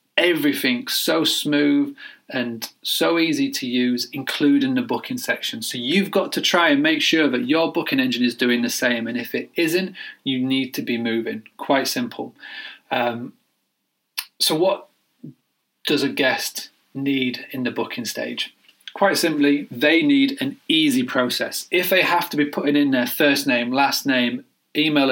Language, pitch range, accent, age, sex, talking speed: English, 125-205 Hz, British, 30-49, male, 165 wpm